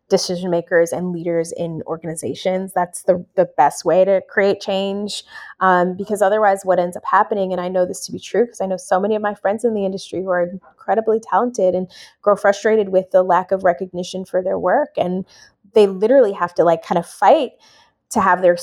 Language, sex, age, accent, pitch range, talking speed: English, female, 20-39, American, 180-210 Hz, 215 wpm